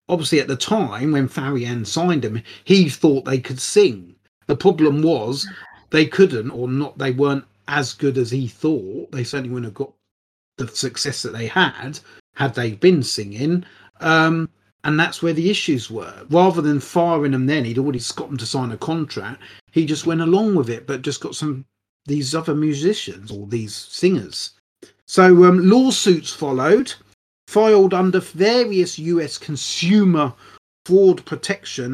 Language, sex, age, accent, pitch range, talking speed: English, male, 30-49, British, 130-175 Hz, 165 wpm